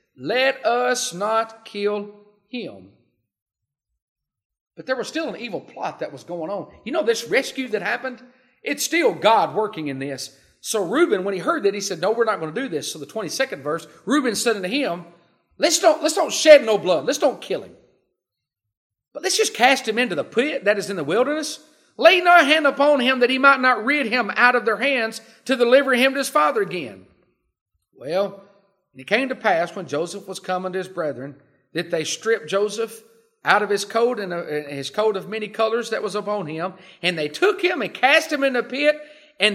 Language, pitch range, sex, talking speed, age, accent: English, 195-290 Hz, male, 210 wpm, 40-59, American